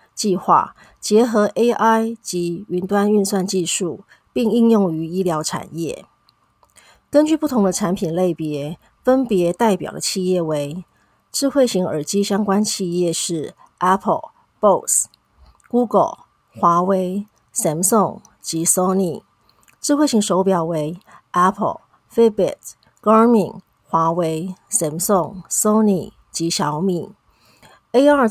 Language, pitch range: Chinese, 170-220 Hz